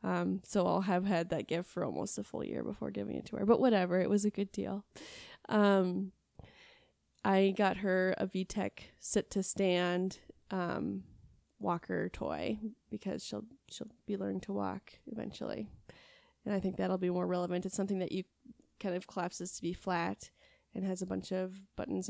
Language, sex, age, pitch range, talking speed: English, female, 20-39, 170-195 Hz, 180 wpm